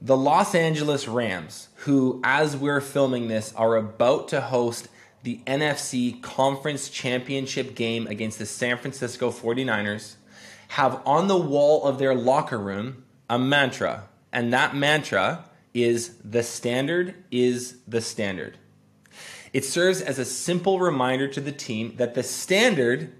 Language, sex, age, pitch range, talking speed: English, male, 20-39, 115-140 Hz, 140 wpm